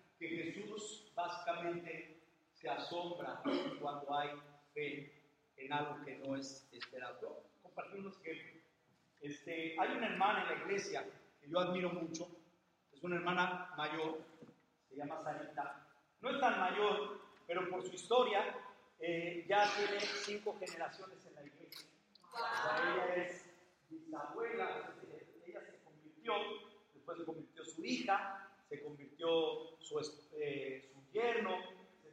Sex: male